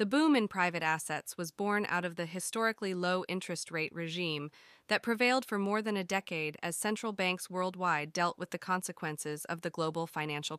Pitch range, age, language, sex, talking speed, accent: 175-215 Hz, 20-39, English, female, 195 wpm, American